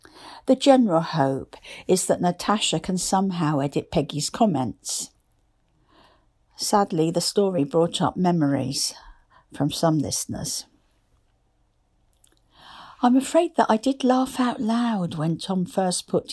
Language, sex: English, female